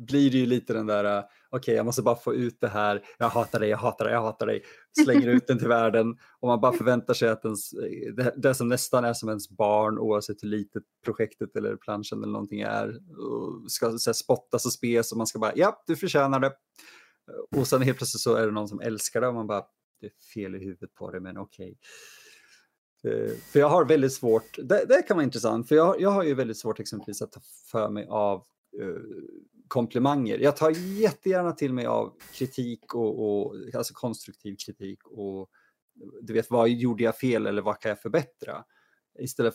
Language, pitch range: Swedish, 105-140 Hz